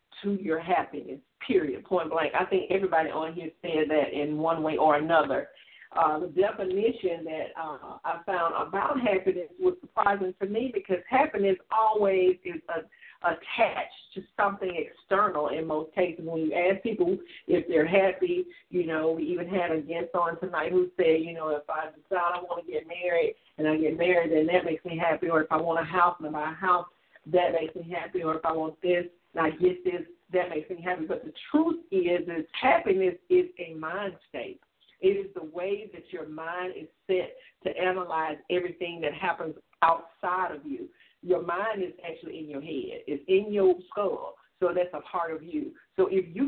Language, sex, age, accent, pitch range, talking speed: English, female, 50-69, American, 160-205 Hz, 195 wpm